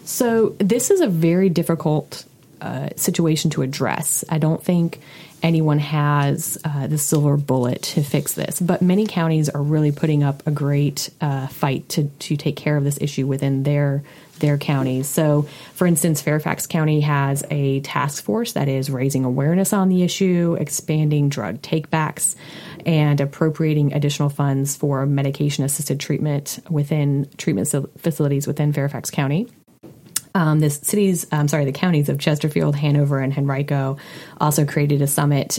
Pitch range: 140-160 Hz